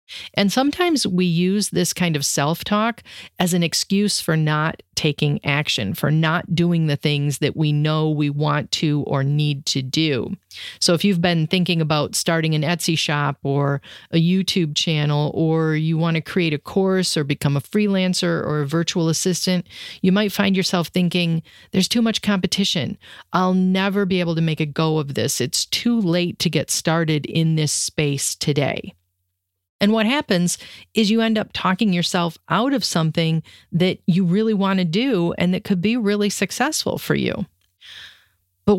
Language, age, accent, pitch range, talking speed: English, 40-59, American, 150-195 Hz, 180 wpm